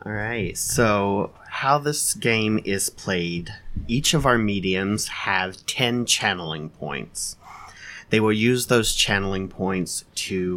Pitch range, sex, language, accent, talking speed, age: 95-110 Hz, male, English, American, 130 wpm, 30-49